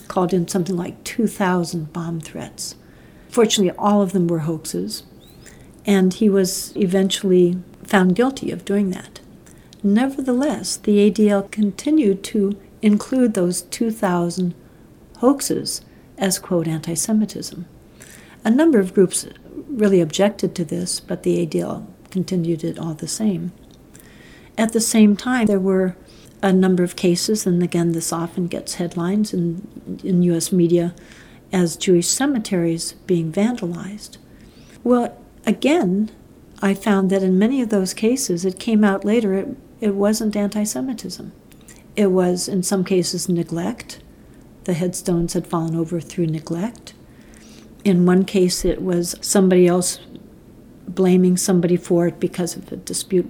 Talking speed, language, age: 135 wpm, English, 60-79